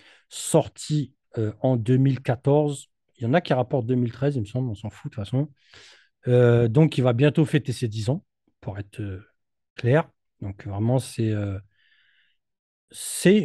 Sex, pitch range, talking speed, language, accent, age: male, 110-150 Hz, 155 wpm, French, French, 40-59